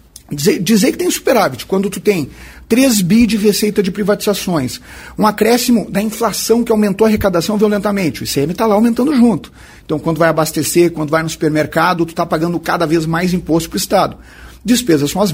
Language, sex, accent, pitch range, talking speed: Portuguese, male, Brazilian, 155-210 Hz, 195 wpm